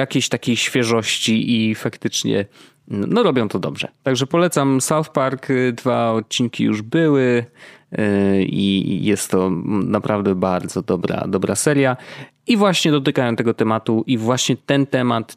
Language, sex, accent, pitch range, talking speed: Polish, male, native, 105-140 Hz, 135 wpm